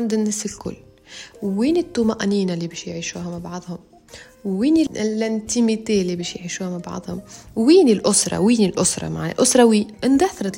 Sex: female